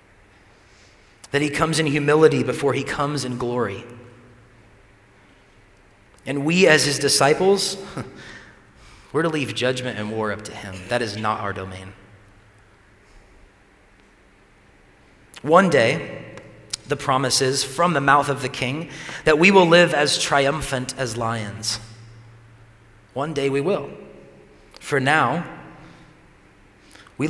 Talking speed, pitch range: 120 wpm, 105-140 Hz